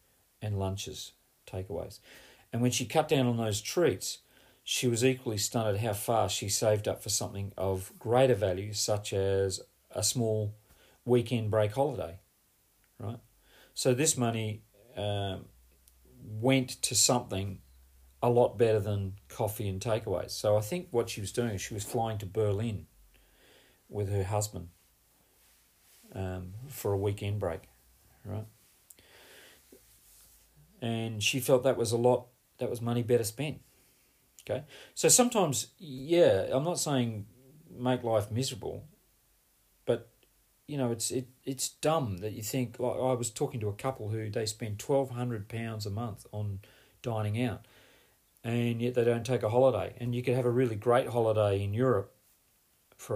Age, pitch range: 40-59, 100-125 Hz